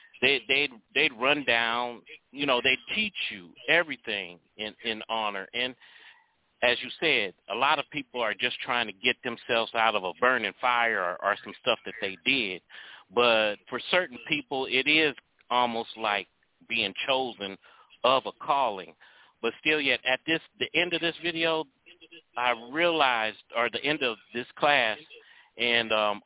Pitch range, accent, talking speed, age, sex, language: 110-130 Hz, American, 165 wpm, 40-59, male, English